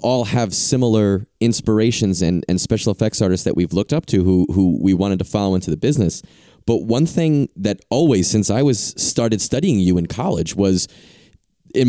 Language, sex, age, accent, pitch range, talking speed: English, male, 30-49, American, 95-130 Hz, 190 wpm